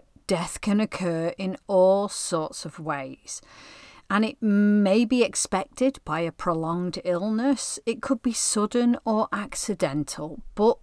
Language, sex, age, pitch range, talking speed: English, female, 40-59, 170-240 Hz, 135 wpm